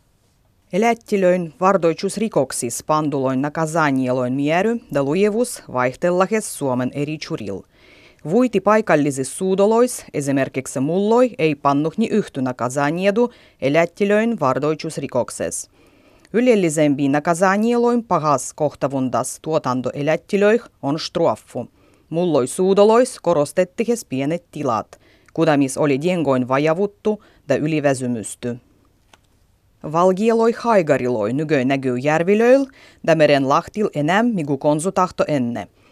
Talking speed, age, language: 90 wpm, 30-49, Finnish